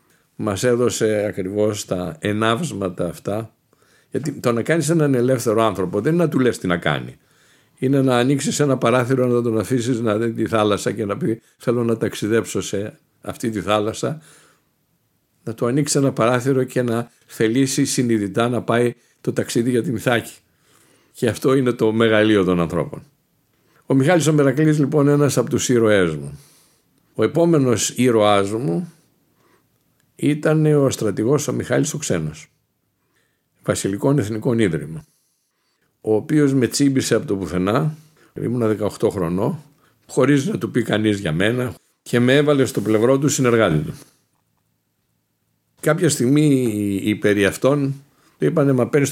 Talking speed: 150 wpm